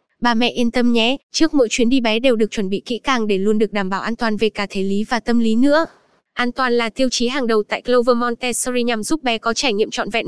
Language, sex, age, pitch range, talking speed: Vietnamese, female, 10-29, 220-260 Hz, 285 wpm